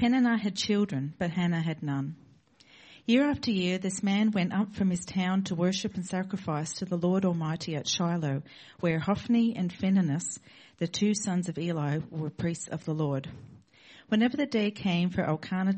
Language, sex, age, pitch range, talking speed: English, female, 50-69, 160-205 Hz, 180 wpm